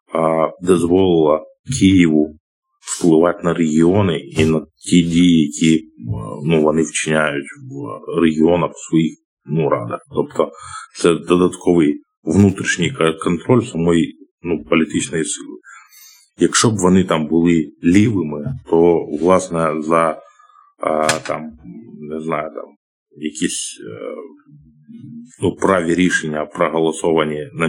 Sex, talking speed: male, 105 wpm